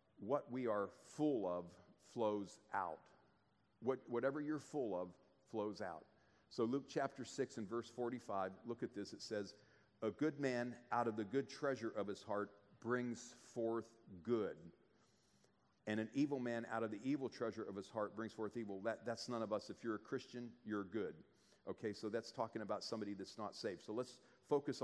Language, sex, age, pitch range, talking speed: English, male, 40-59, 105-125 Hz, 190 wpm